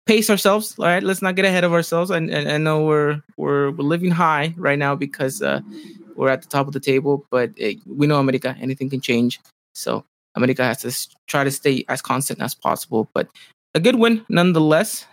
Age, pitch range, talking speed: 20-39, 135-170 Hz, 220 wpm